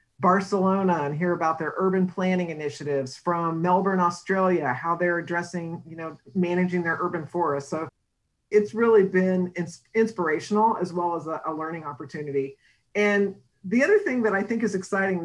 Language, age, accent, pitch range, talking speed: English, 50-69, American, 160-190 Hz, 160 wpm